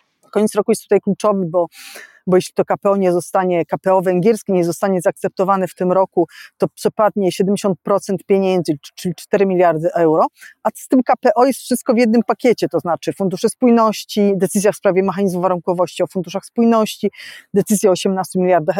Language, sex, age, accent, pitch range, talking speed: Polish, female, 40-59, native, 190-225 Hz, 170 wpm